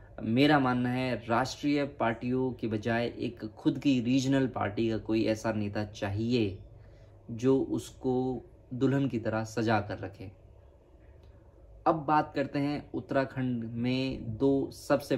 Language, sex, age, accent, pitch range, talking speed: English, male, 20-39, Indian, 105-130 Hz, 130 wpm